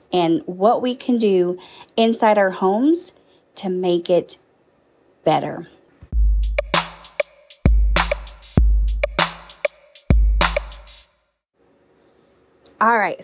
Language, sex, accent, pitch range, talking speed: English, female, American, 180-235 Hz, 60 wpm